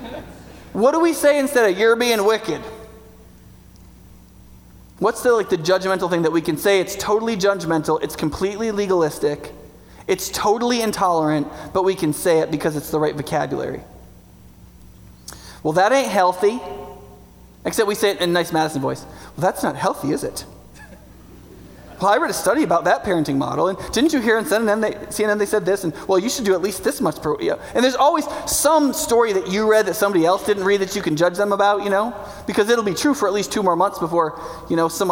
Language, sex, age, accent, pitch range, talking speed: English, male, 20-39, American, 170-235 Hz, 210 wpm